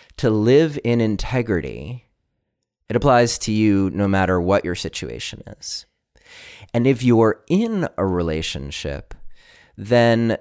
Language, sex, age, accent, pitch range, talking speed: English, male, 30-49, American, 95-130 Hz, 120 wpm